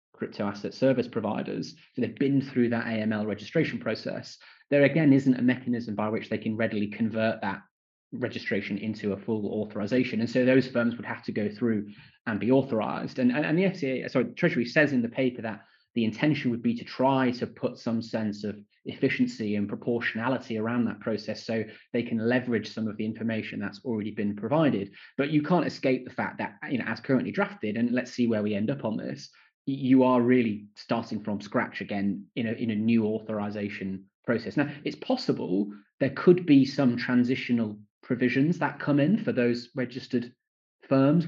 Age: 20-39